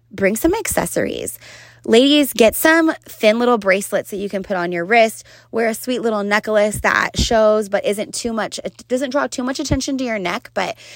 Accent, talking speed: American, 205 wpm